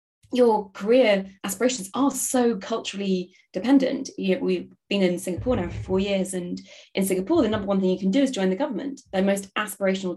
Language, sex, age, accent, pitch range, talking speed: English, female, 20-39, British, 185-230 Hz, 200 wpm